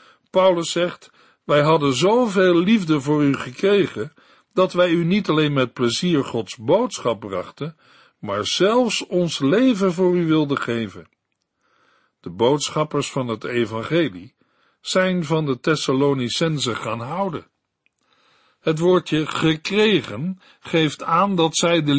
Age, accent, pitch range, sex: 60-79, Dutch, 140-180 Hz, male